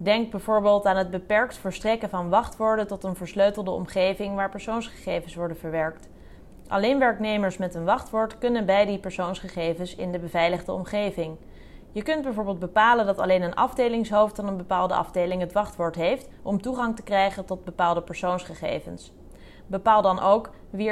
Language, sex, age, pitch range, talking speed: Dutch, female, 20-39, 180-220 Hz, 160 wpm